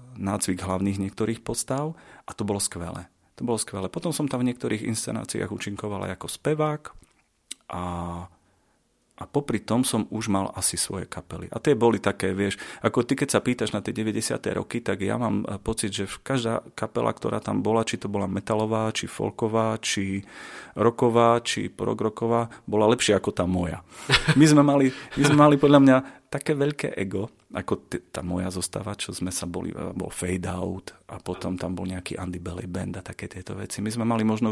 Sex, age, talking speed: male, 40-59, 185 wpm